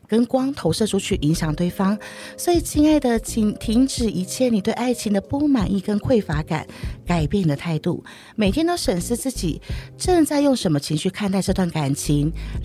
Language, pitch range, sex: Chinese, 175-245 Hz, female